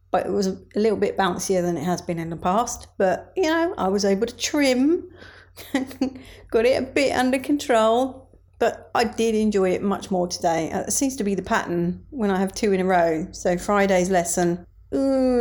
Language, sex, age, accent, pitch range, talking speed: English, female, 40-59, British, 185-230 Hz, 205 wpm